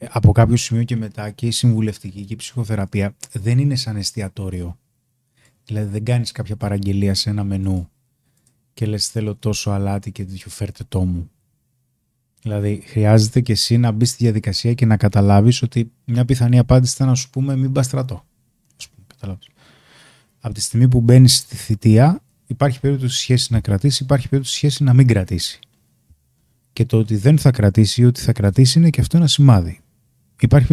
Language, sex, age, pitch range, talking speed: Greek, male, 30-49, 110-135 Hz, 175 wpm